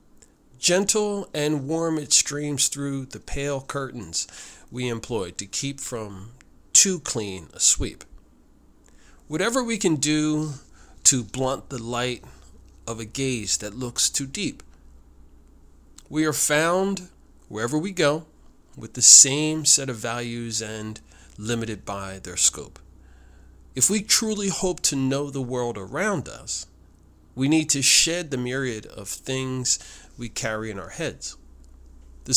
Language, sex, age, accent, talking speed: English, male, 40-59, American, 135 wpm